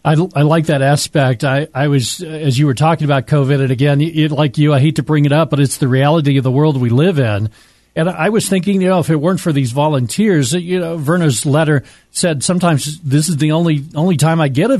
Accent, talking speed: American, 250 wpm